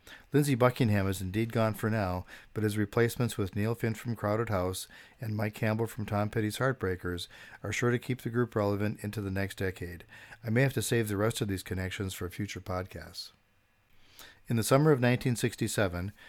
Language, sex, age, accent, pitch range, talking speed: English, male, 50-69, American, 95-115 Hz, 190 wpm